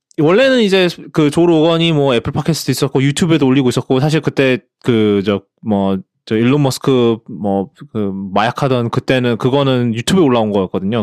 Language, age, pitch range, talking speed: English, 20-39, 115-165 Hz, 145 wpm